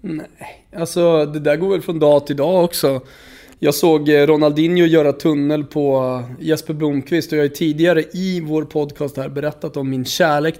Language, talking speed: Swedish, 175 wpm